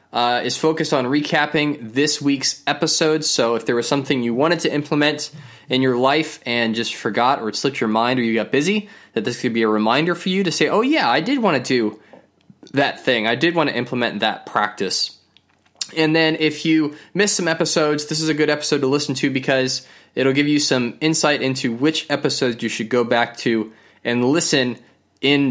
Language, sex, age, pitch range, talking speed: English, male, 20-39, 125-160 Hz, 210 wpm